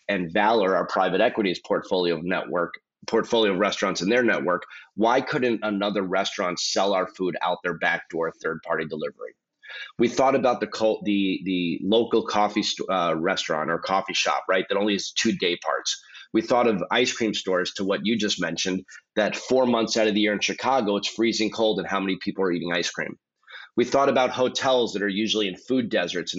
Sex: male